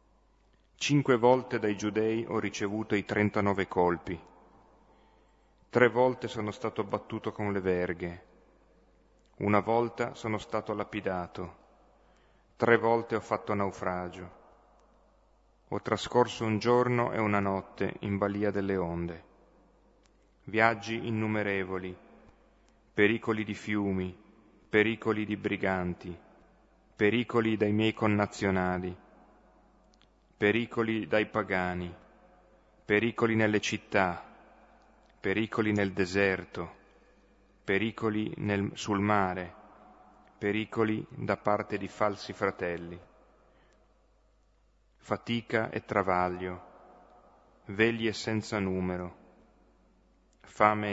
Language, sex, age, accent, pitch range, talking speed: Italian, male, 30-49, native, 90-110 Hz, 90 wpm